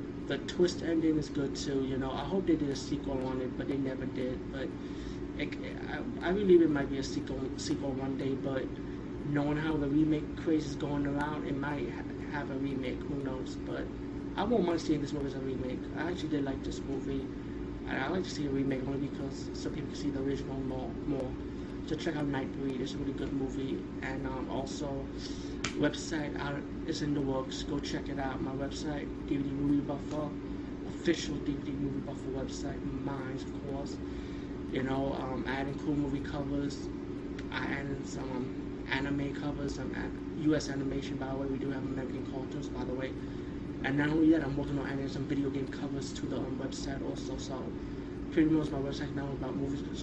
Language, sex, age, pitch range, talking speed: English, male, 20-39, 135-145 Hz, 205 wpm